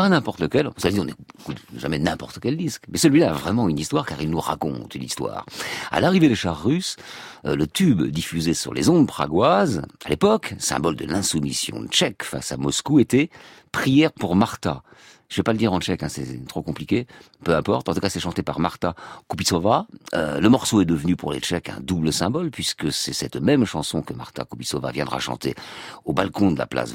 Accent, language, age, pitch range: French, French, 50-69, 75-120 Hz